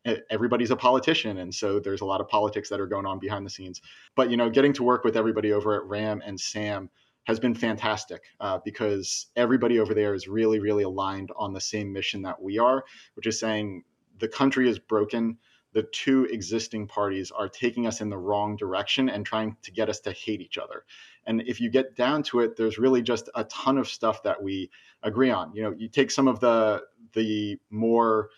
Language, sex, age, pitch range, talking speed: English, male, 30-49, 105-125 Hz, 220 wpm